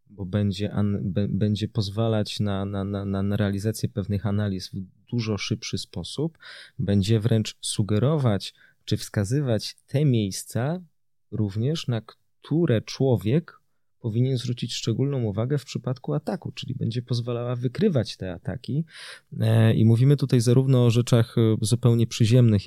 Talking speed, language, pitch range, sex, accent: 125 wpm, Polish, 100-120 Hz, male, native